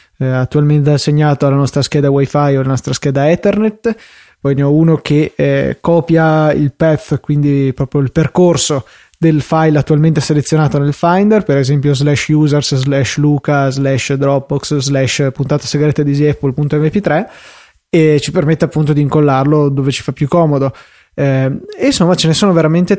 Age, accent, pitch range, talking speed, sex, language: 20-39, native, 145-170 Hz, 160 wpm, male, Italian